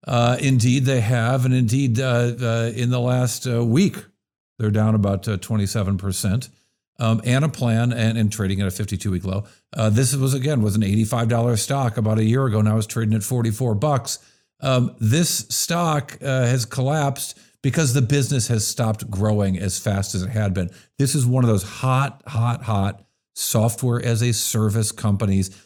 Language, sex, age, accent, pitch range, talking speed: English, male, 50-69, American, 110-135 Hz, 180 wpm